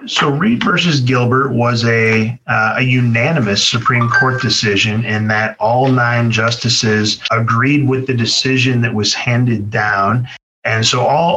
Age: 30-49